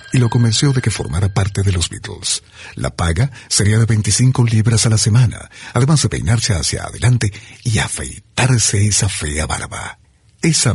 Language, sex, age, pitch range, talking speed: Spanish, male, 60-79, 110-130 Hz, 165 wpm